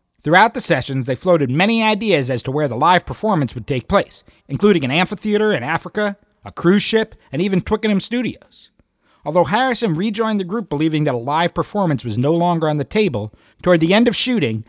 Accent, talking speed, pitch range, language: American, 200 wpm, 130-195 Hz, English